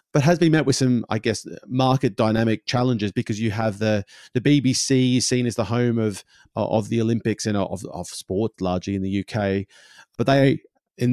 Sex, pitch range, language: male, 105-130 Hz, English